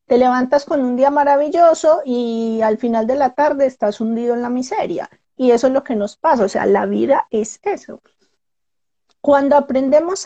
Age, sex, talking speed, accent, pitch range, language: 40-59, female, 185 wpm, Colombian, 230-290 Hz, Spanish